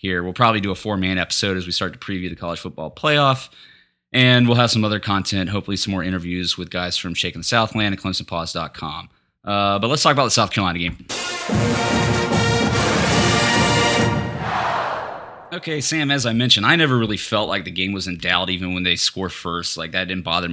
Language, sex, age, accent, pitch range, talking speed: English, male, 20-39, American, 90-110 Hz, 195 wpm